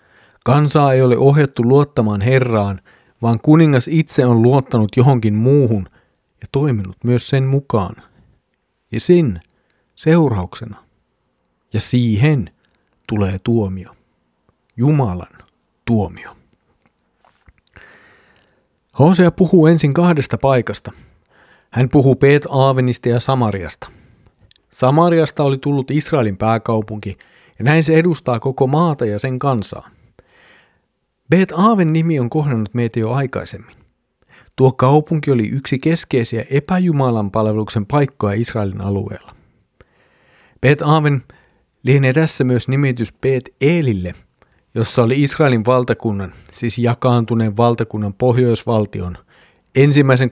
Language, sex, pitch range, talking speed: Finnish, male, 105-140 Hz, 105 wpm